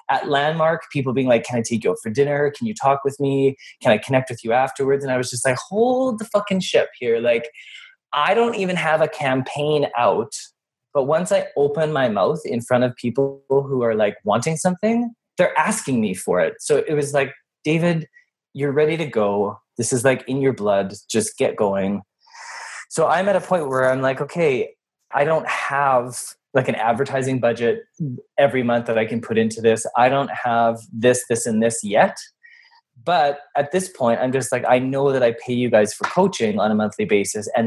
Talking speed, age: 210 wpm, 20-39